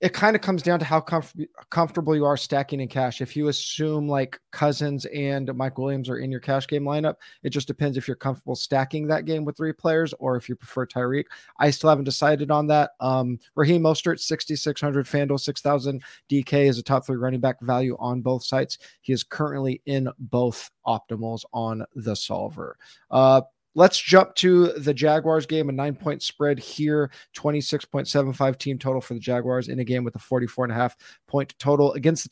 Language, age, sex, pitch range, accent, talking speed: English, 20-39, male, 130-155 Hz, American, 190 wpm